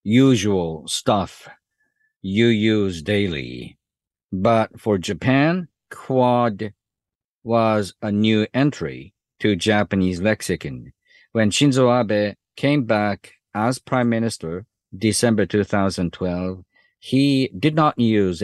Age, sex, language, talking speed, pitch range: 50-69, male, English, 100 wpm, 95-120 Hz